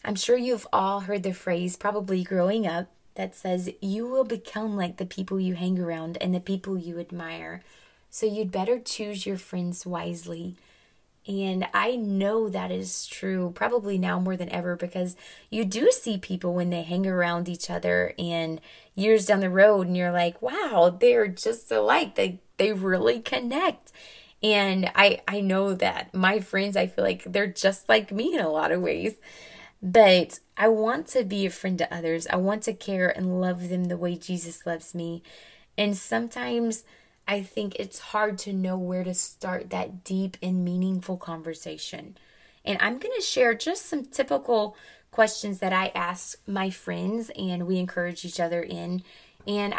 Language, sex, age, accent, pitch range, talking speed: English, female, 20-39, American, 175-210 Hz, 180 wpm